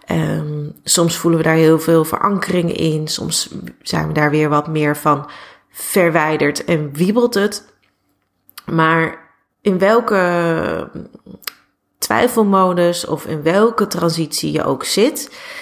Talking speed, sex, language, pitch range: 125 wpm, female, Dutch, 160-200 Hz